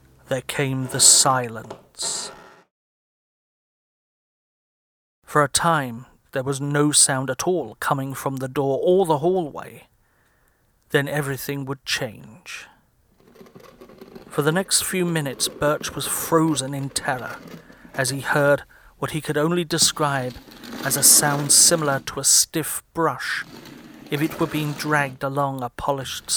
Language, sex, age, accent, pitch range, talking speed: English, male, 40-59, British, 135-155 Hz, 130 wpm